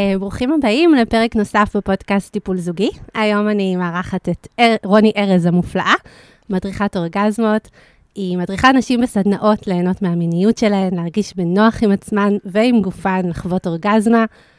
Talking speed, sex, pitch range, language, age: 130 wpm, female, 190-235 Hz, Hebrew, 20-39